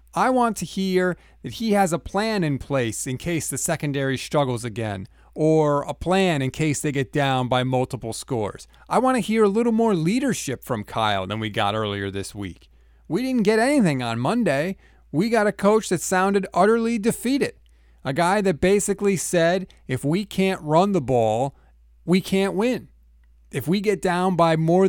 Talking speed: 190 wpm